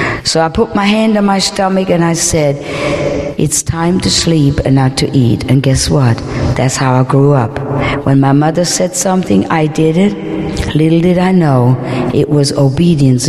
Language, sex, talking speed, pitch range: English, female, 190 wpm, 145-200 Hz